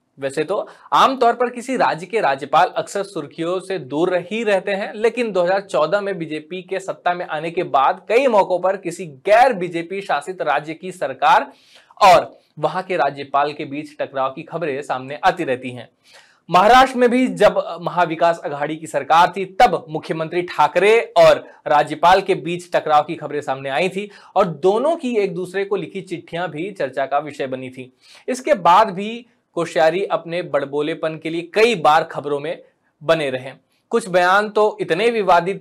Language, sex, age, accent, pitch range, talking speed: Hindi, male, 20-39, native, 150-205 Hz, 175 wpm